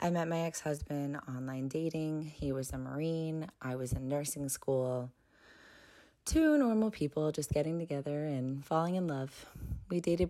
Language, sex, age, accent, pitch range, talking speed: English, female, 20-39, American, 125-155 Hz, 155 wpm